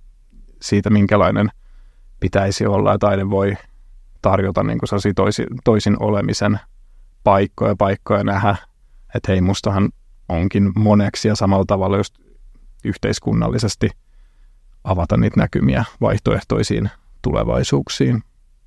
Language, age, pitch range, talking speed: Finnish, 30-49, 100-105 Hz, 105 wpm